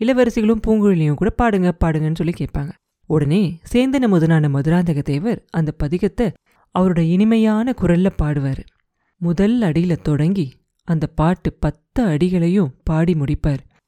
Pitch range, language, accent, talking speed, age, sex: 155-210 Hz, Tamil, native, 110 wpm, 30-49, female